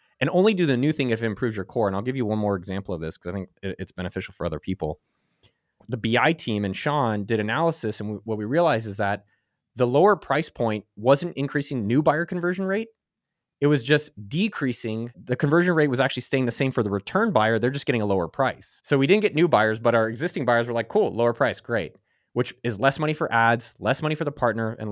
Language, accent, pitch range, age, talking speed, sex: English, American, 100-135 Hz, 30-49, 245 wpm, male